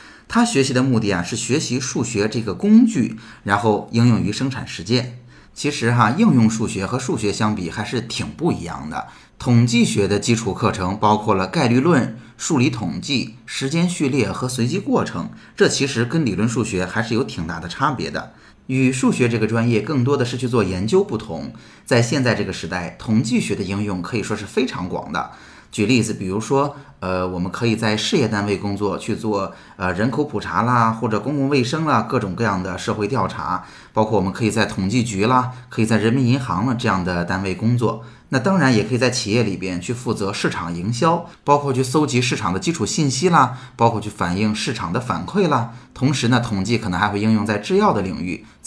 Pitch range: 100-130 Hz